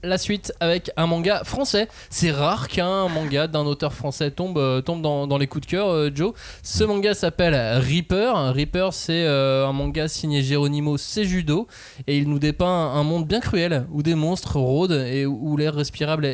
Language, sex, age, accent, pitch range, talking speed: French, male, 20-39, French, 135-175 Hz, 200 wpm